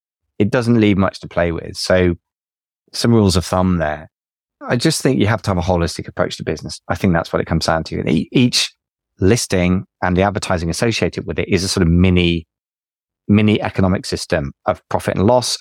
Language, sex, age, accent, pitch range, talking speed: English, male, 30-49, British, 85-105 Hz, 205 wpm